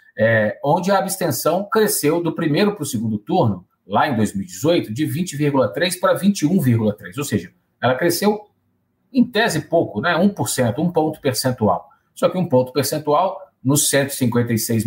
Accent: Brazilian